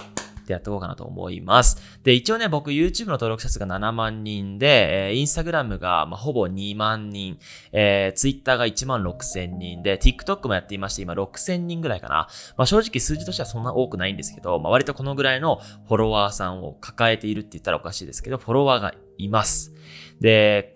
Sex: male